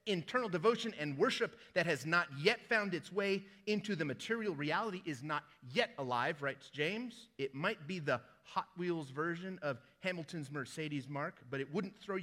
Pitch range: 140-190 Hz